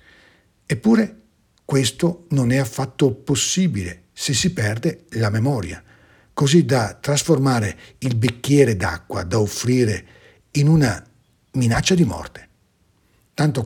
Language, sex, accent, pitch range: Italian, male, native, 105-140 Hz